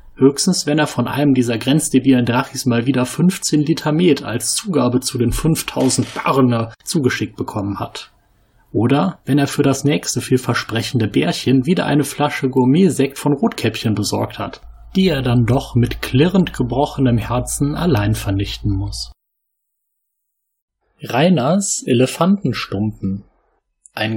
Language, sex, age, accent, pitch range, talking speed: German, male, 30-49, German, 110-150 Hz, 130 wpm